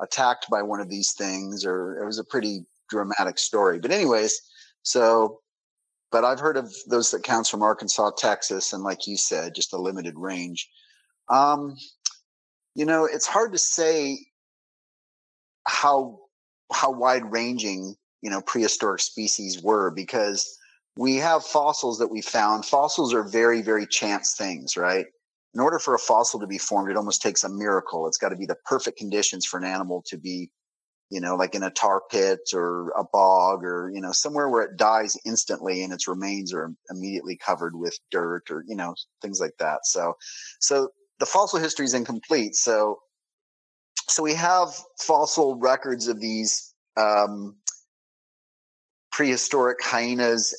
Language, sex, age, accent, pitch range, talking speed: English, male, 30-49, American, 100-140 Hz, 165 wpm